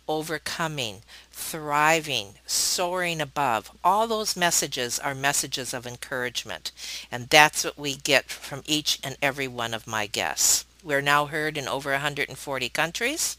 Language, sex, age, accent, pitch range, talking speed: English, female, 50-69, American, 125-165 Hz, 140 wpm